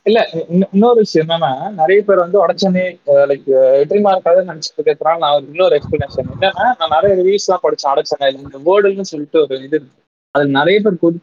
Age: 20-39